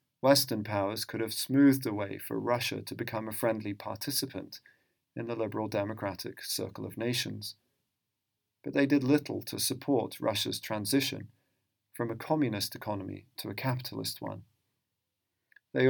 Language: English